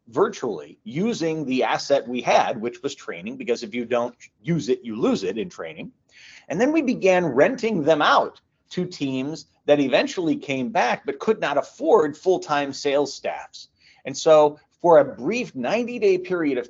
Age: 40-59